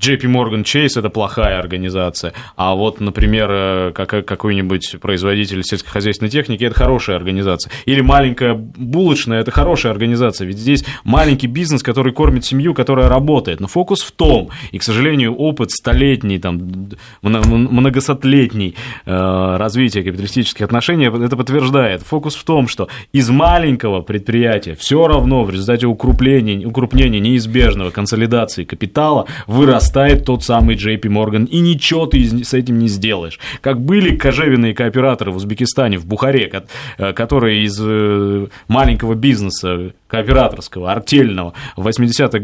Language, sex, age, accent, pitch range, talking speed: Russian, male, 20-39, native, 105-135 Hz, 135 wpm